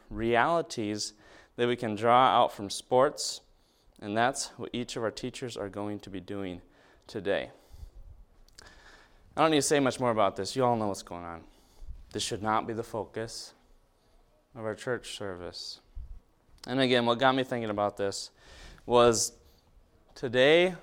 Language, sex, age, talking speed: English, male, 20-39, 160 wpm